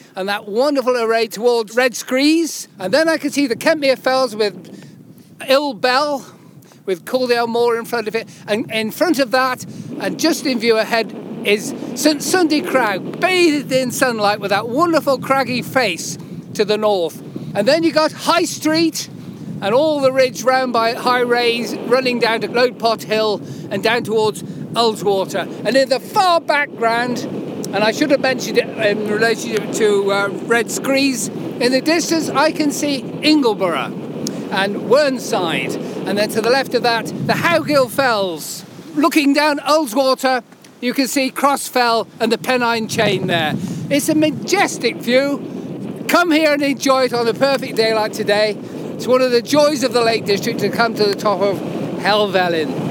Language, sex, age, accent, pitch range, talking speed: English, male, 50-69, British, 215-275 Hz, 175 wpm